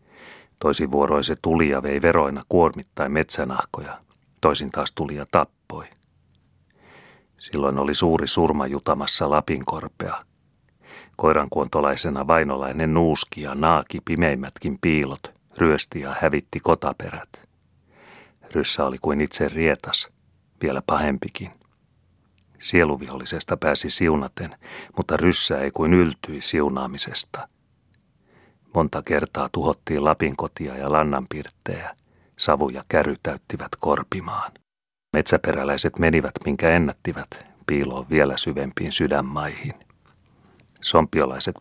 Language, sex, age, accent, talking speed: Finnish, male, 40-59, native, 95 wpm